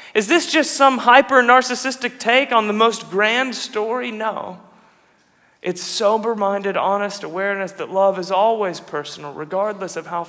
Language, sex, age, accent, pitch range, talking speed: English, male, 30-49, American, 185-245 Hz, 140 wpm